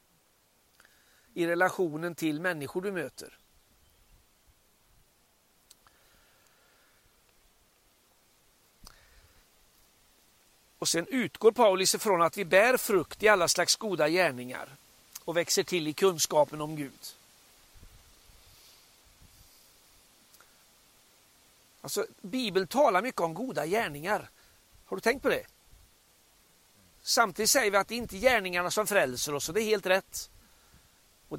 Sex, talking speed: male, 110 wpm